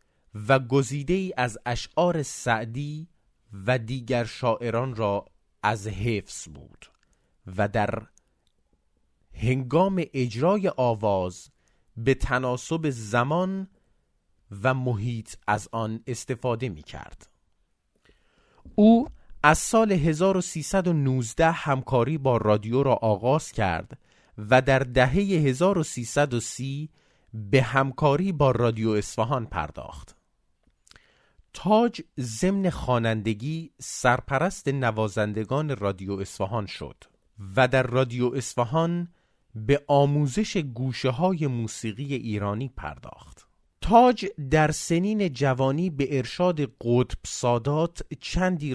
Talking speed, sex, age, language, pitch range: 90 wpm, male, 30-49, Persian, 110-150 Hz